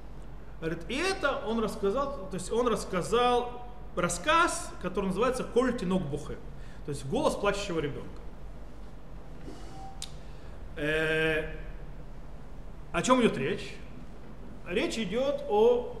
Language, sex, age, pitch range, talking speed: Russian, male, 30-49, 150-215 Hz, 100 wpm